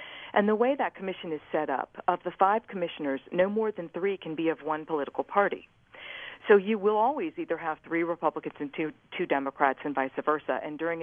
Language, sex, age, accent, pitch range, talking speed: English, female, 50-69, American, 150-185 Hz, 210 wpm